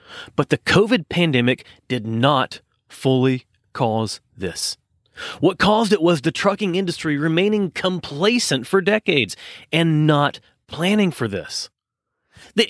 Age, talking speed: 30-49, 125 wpm